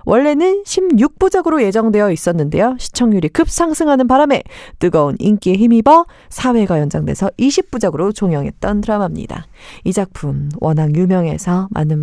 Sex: female